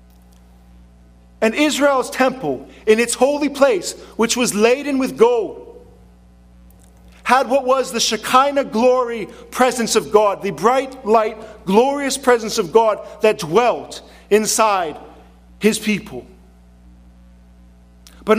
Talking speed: 110 wpm